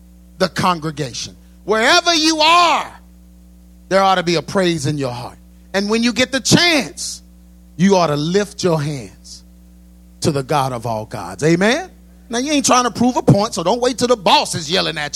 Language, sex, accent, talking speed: English, male, American, 200 wpm